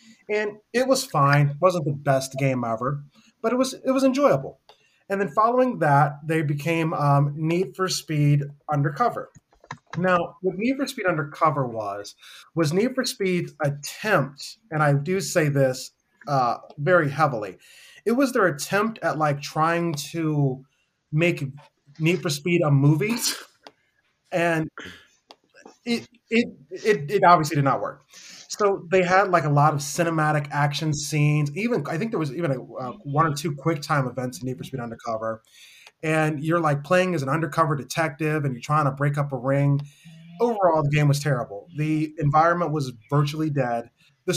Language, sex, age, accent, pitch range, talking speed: English, male, 30-49, American, 145-180 Hz, 170 wpm